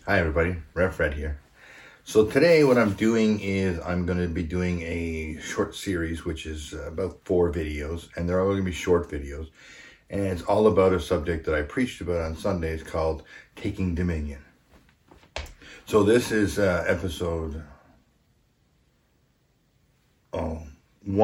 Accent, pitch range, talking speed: American, 80-95 Hz, 150 wpm